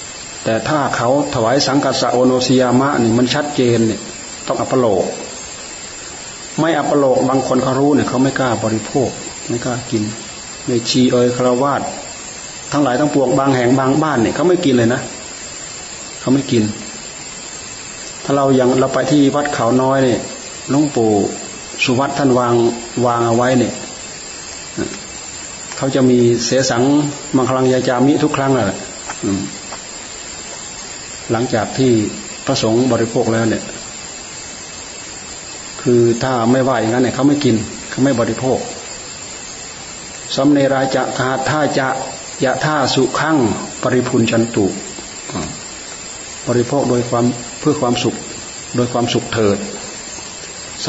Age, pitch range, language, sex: 30-49, 115-135 Hz, Thai, male